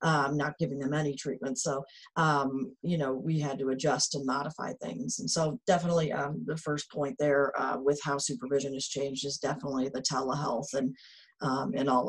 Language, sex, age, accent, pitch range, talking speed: English, female, 40-59, American, 140-165 Hz, 195 wpm